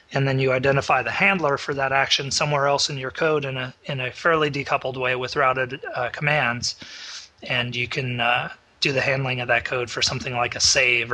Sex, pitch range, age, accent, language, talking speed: male, 125-145 Hz, 30-49, American, English, 215 wpm